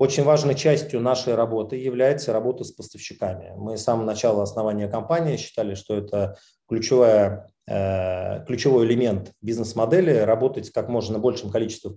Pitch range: 105-125 Hz